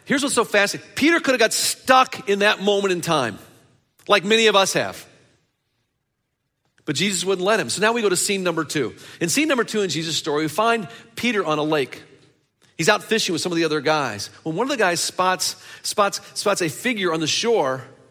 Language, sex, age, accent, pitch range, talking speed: English, male, 40-59, American, 135-195 Hz, 220 wpm